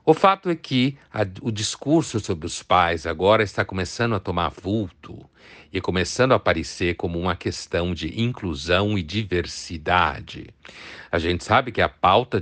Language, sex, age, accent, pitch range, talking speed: Portuguese, male, 60-79, Brazilian, 90-125 Hz, 155 wpm